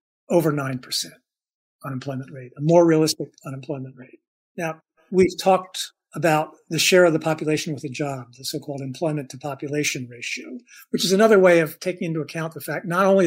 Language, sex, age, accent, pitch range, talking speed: English, male, 50-69, American, 145-175 Hz, 175 wpm